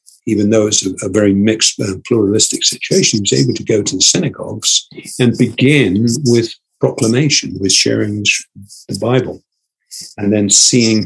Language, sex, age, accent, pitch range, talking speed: English, male, 50-69, British, 100-115 Hz, 150 wpm